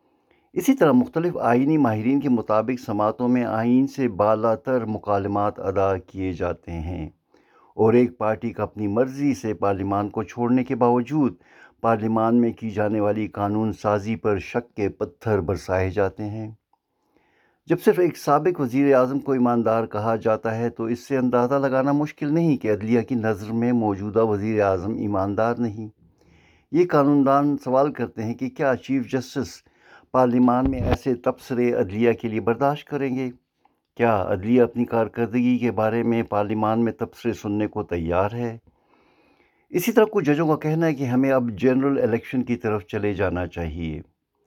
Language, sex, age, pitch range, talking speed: Urdu, male, 60-79, 105-130 Hz, 165 wpm